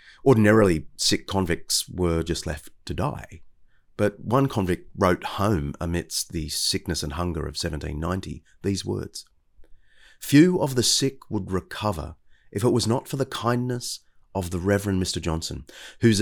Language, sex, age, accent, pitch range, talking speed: English, male, 30-49, Australian, 80-105 Hz, 150 wpm